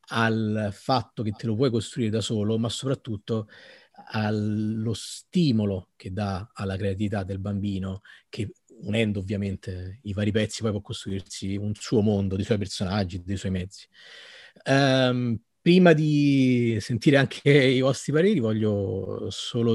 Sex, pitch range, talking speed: male, 105-125 Hz, 145 wpm